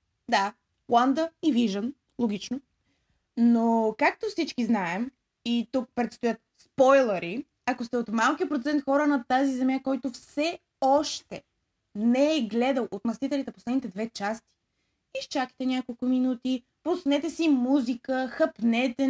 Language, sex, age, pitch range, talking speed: Bulgarian, female, 20-39, 225-285 Hz, 125 wpm